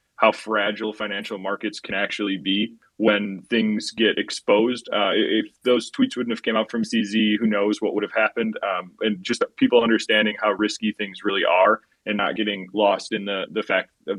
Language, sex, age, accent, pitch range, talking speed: English, male, 20-39, American, 105-115 Hz, 195 wpm